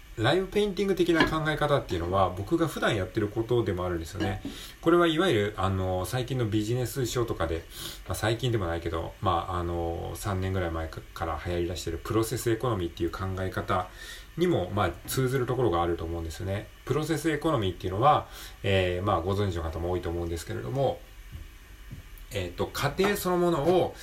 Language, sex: Japanese, male